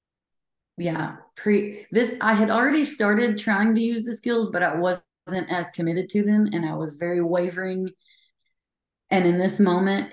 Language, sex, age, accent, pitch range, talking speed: English, female, 30-49, American, 160-195 Hz, 165 wpm